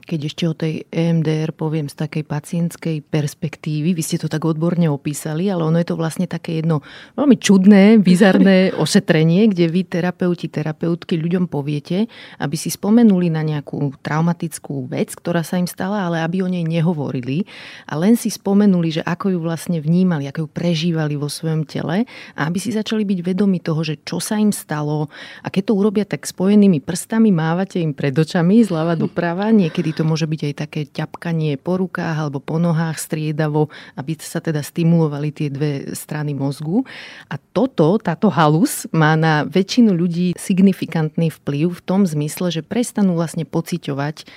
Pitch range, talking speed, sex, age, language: 155-185 Hz, 170 wpm, female, 30-49, Slovak